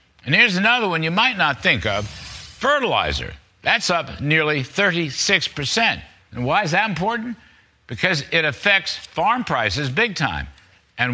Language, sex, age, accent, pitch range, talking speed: English, male, 60-79, American, 140-195 Hz, 145 wpm